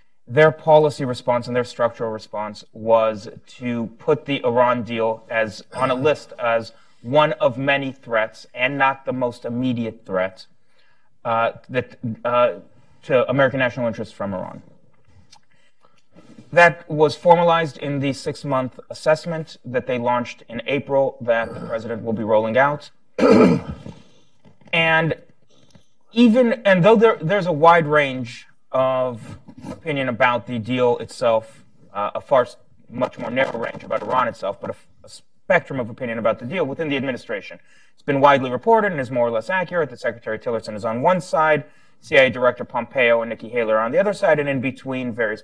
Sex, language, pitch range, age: male, English, 115-145 Hz, 30-49